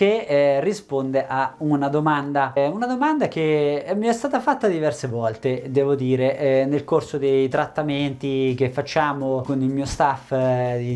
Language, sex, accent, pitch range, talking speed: Italian, male, native, 135-195 Hz, 165 wpm